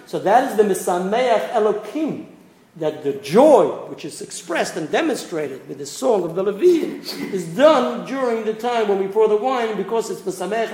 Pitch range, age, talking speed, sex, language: 185-225 Hz, 50-69, 185 wpm, male, English